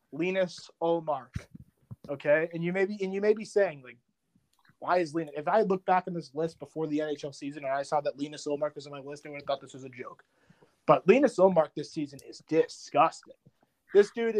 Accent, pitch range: American, 140-175 Hz